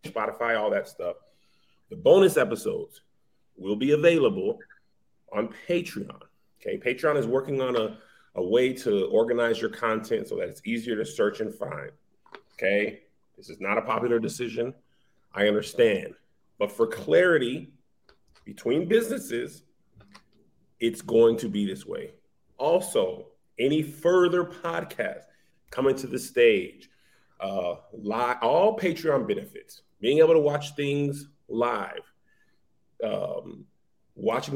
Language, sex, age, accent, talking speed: English, male, 30-49, American, 125 wpm